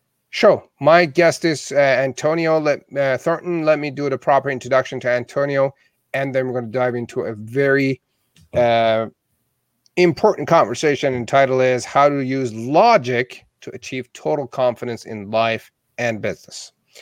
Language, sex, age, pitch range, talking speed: English, male, 40-59, 120-145 Hz, 160 wpm